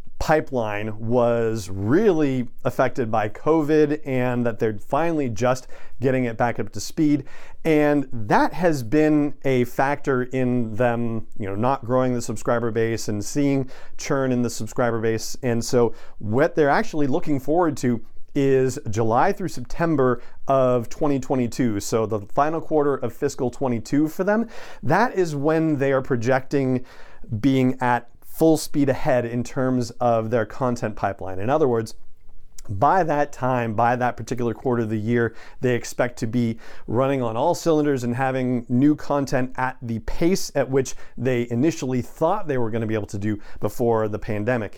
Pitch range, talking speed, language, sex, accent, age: 115-145 Hz, 165 wpm, English, male, American, 40-59